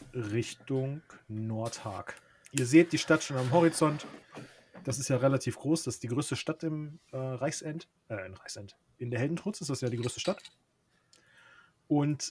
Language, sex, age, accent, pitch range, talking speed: German, male, 30-49, German, 115-145 Hz, 170 wpm